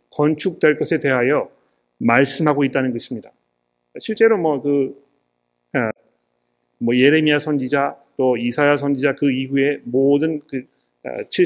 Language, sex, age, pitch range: Korean, male, 40-59, 110-160 Hz